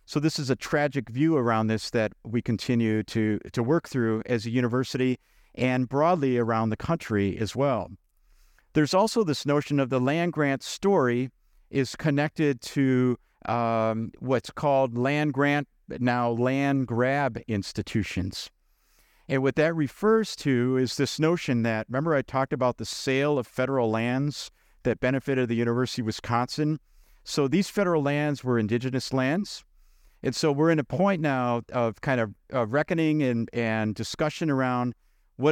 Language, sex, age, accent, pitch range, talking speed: English, male, 50-69, American, 115-145 Hz, 150 wpm